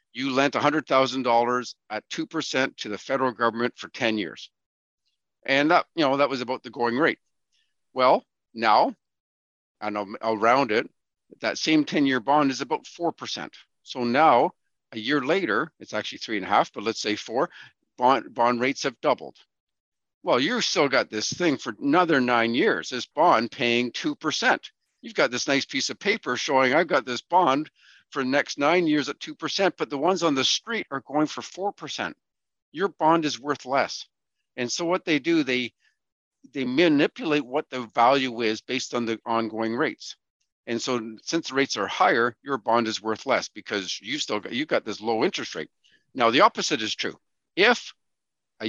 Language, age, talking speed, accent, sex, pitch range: English, 50-69, 185 wpm, American, male, 115-150 Hz